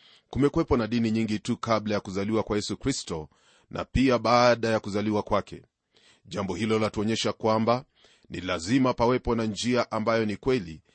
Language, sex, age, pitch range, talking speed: Swahili, male, 30-49, 110-125 Hz, 160 wpm